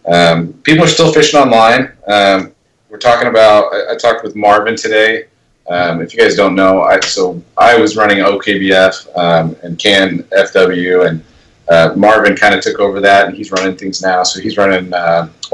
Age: 30-49